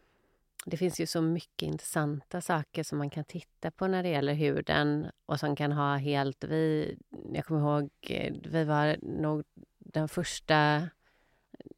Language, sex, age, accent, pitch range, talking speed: Swedish, female, 30-49, native, 145-175 Hz, 155 wpm